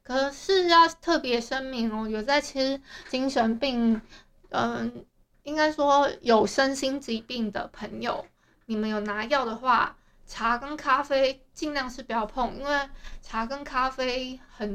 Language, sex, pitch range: Chinese, female, 225-285 Hz